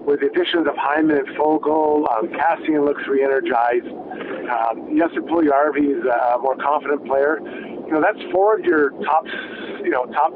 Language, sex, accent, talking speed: English, male, American, 155 wpm